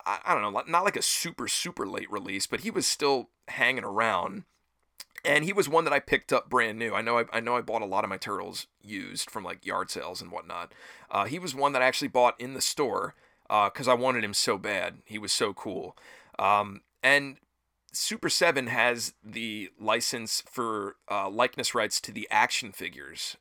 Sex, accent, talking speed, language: male, American, 210 wpm, English